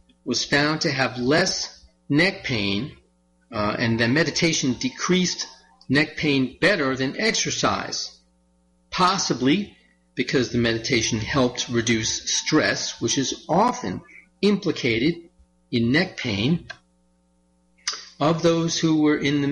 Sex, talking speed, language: male, 115 wpm, English